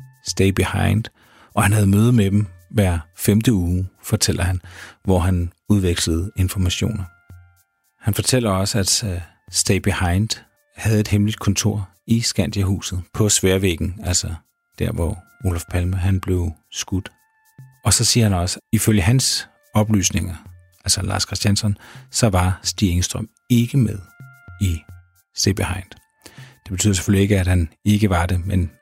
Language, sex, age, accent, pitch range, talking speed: Danish, male, 40-59, native, 90-110 Hz, 140 wpm